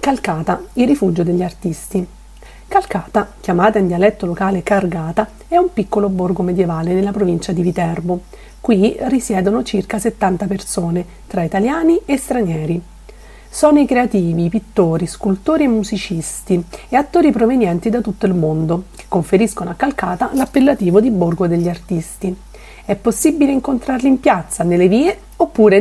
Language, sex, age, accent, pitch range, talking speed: Italian, female, 40-59, native, 180-240 Hz, 140 wpm